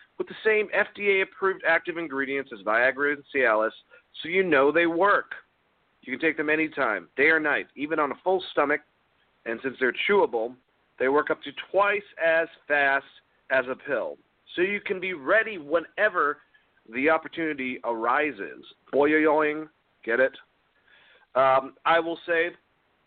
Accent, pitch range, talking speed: American, 140-180 Hz, 155 wpm